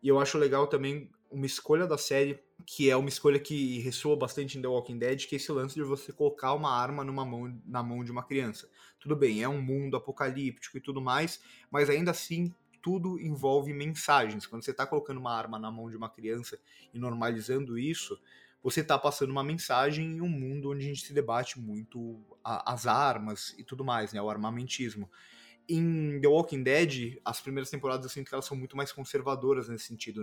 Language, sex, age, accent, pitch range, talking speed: Portuguese, male, 20-39, Brazilian, 120-145 Hz, 200 wpm